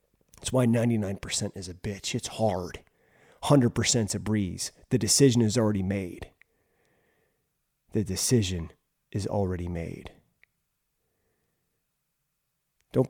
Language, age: English, 30-49